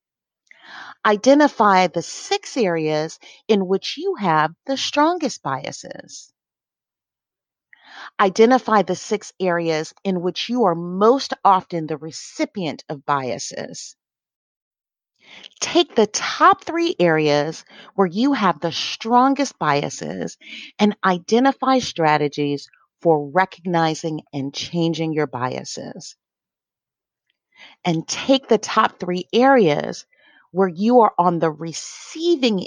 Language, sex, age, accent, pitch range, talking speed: English, female, 40-59, American, 155-235 Hz, 105 wpm